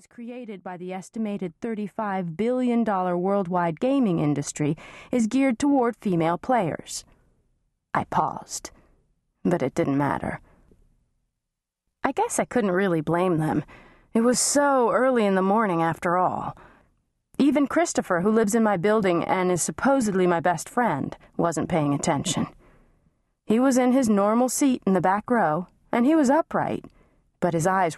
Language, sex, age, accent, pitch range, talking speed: English, female, 30-49, American, 180-245 Hz, 150 wpm